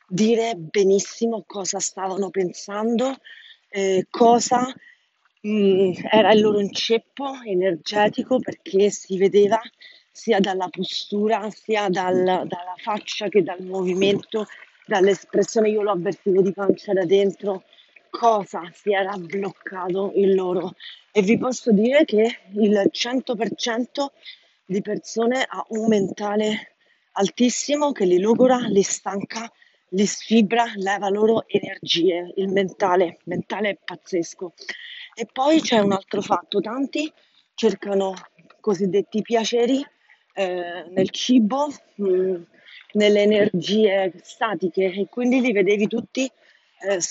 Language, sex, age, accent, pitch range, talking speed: Italian, female, 40-59, native, 195-235 Hz, 115 wpm